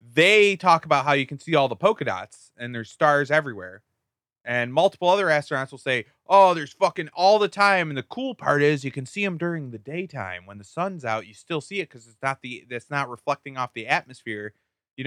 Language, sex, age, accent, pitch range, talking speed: English, male, 30-49, American, 135-195 Hz, 230 wpm